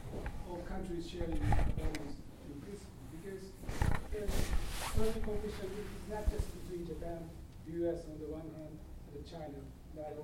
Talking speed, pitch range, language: 115 wpm, 140-180 Hz, English